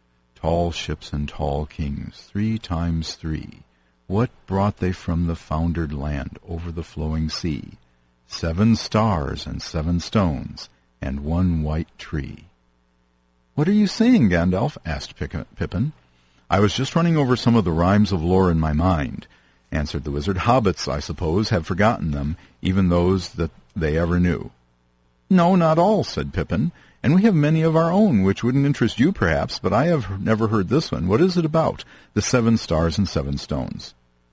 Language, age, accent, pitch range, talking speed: English, 50-69, American, 70-110 Hz, 170 wpm